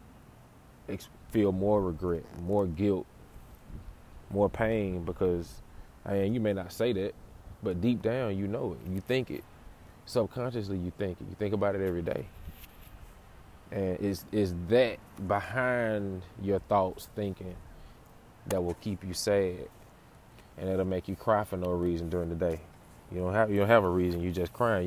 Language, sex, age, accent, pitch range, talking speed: English, male, 20-39, American, 90-105 Hz, 165 wpm